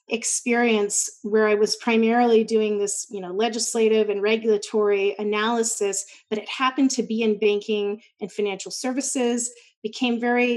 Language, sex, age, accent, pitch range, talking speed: English, female, 30-49, American, 210-260 Hz, 140 wpm